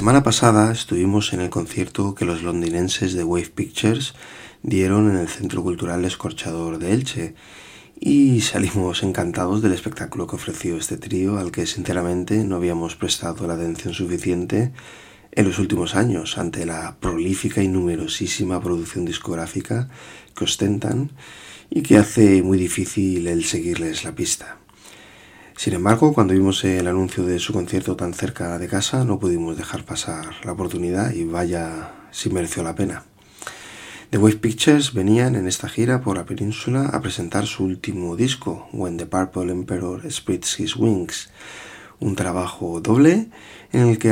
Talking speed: 155 wpm